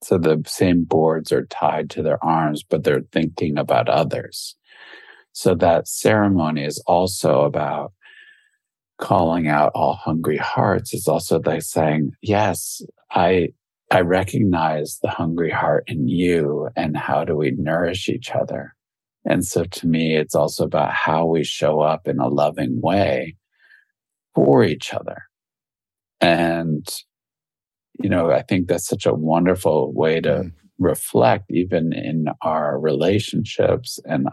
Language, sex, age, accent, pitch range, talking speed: English, male, 50-69, American, 80-100 Hz, 140 wpm